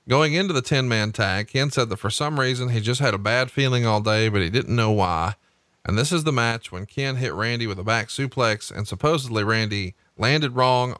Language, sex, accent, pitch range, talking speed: English, male, American, 105-125 Hz, 230 wpm